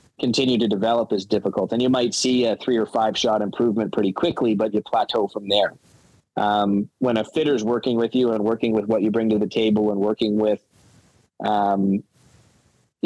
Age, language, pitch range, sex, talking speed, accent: 20-39, English, 105-125 Hz, male, 200 wpm, American